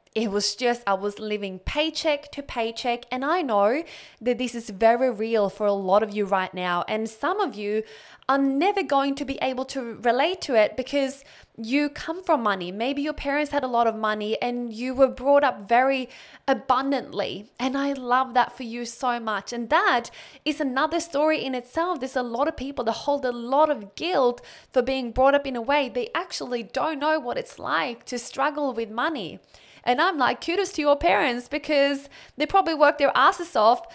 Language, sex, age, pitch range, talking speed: English, female, 20-39, 220-285 Hz, 205 wpm